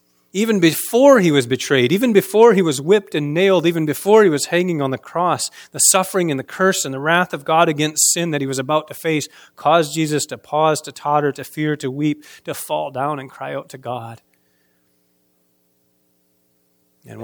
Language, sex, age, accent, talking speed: English, male, 30-49, American, 200 wpm